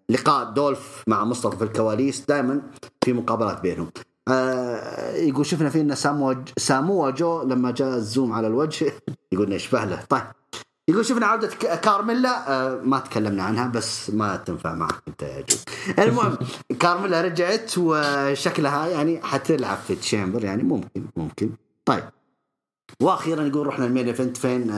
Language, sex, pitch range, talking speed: English, male, 115-155 Hz, 140 wpm